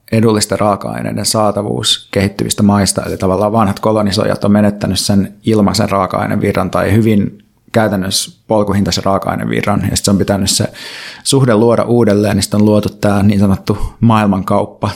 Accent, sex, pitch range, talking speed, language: native, male, 100-110 Hz, 140 wpm, Finnish